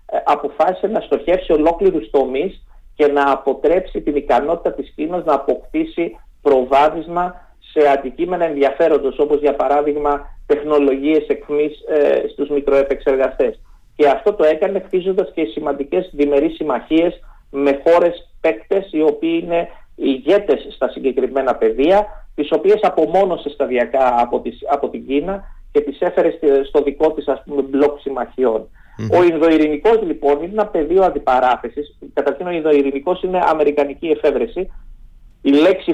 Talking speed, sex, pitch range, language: 125 wpm, male, 140-190 Hz, Greek